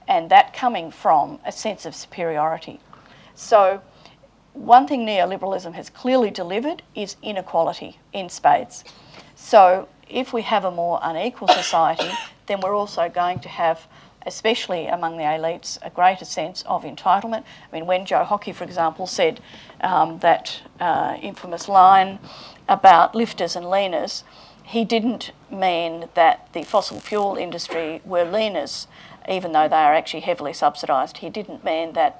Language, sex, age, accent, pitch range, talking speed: English, female, 50-69, Australian, 160-205 Hz, 150 wpm